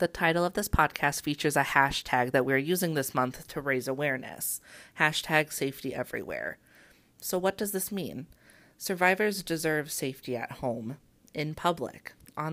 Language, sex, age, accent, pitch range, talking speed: English, female, 30-49, American, 130-160 Hz, 155 wpm